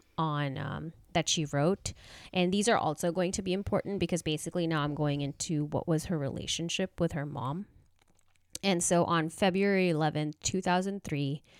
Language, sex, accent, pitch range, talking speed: English, female, American, 145-180 Hz, 170 wpm